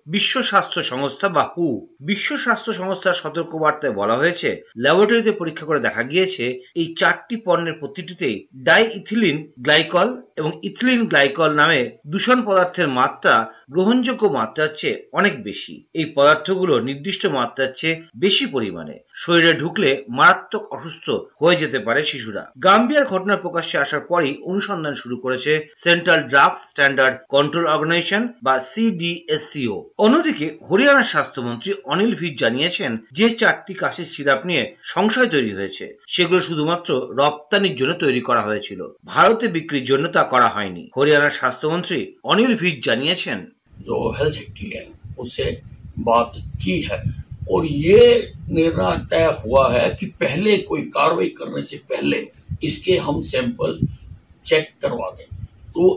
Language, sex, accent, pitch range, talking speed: Bengali, male, native, 140-205 Hz, 90 wpm